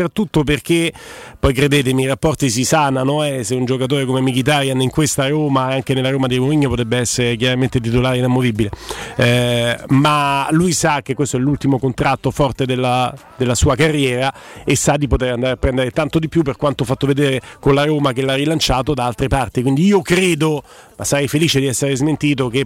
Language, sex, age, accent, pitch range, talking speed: Italian, male, 40-59, native, 130-150 Hz, 200 wpm